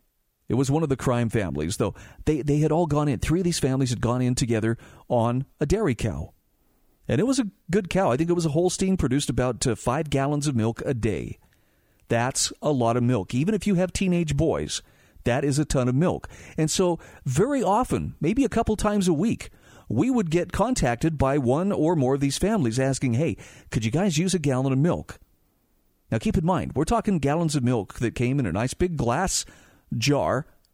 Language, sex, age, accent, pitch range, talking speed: English, male, 50-69, American, 125-170 Hz, 220 wpm